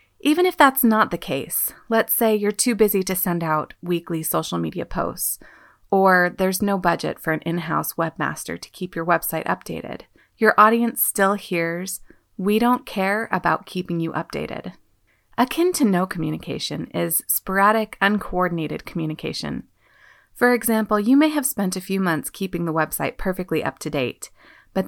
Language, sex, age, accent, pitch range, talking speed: English, female, 30-49, American, 170-220 Hz, 160 wpm